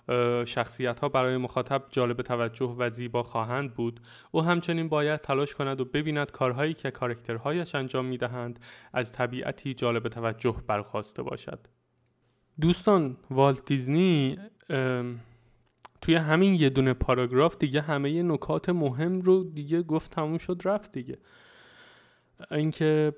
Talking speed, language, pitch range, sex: 125 wpm, Persian, 125-150 Hz, male